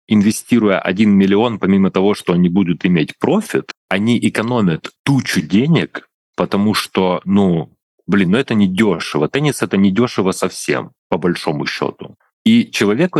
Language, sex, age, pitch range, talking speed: Russian, male, 30-49, 100-125 Hz, 145 wpm